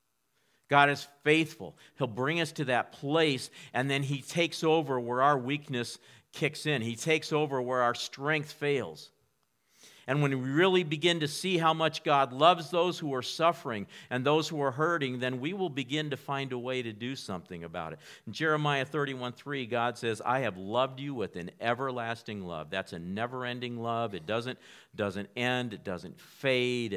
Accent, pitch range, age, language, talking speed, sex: American, 115-140 Hz, 50-69, English, 185 wpm, male